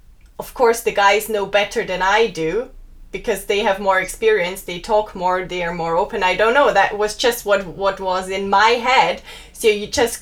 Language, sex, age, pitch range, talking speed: German, female, 20-39, 195-235 Hz, 210 wpm